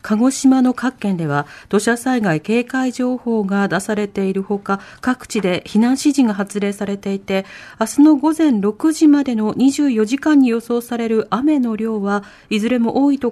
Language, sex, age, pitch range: Japanese, female, 40-59, 185-255 Hz